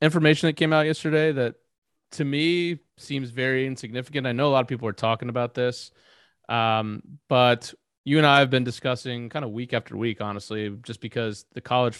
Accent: American